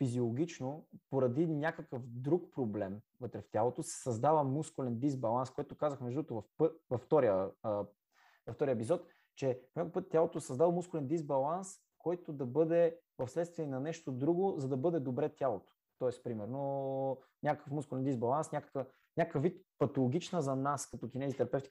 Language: Bulgarian